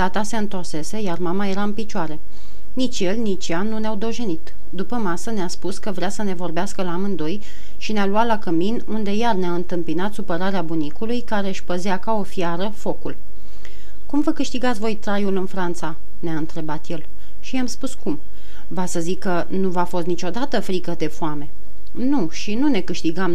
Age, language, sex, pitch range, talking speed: 30-49, Romanian, female, 170-215 Hz, 190 wpm